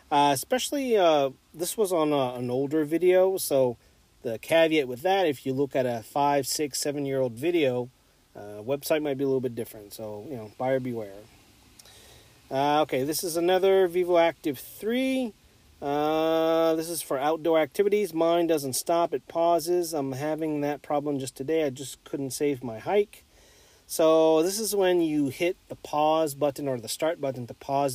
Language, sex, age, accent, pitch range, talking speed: English, male, 40-59, American, 130-165 Hz, 180 wpm